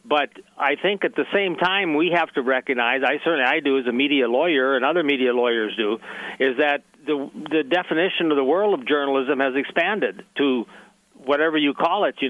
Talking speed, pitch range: 205 wpm, 135-160 Hz